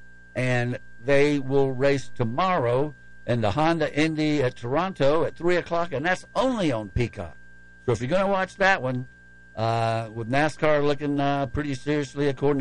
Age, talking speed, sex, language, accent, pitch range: 60-79, 165 wpm, male, English, American, 100-150 Hz